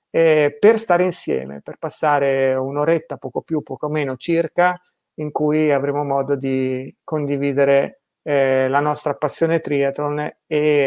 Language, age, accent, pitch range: Italian, 30-49, native, 140-170 Hz